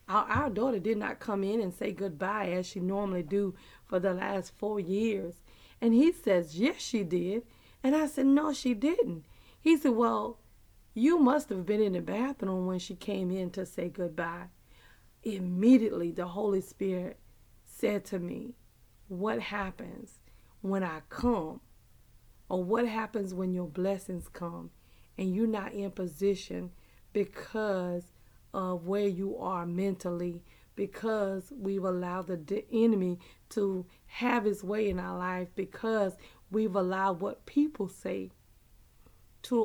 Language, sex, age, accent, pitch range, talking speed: English, female, 40-59, American, 180-220 Hz, 145 wpm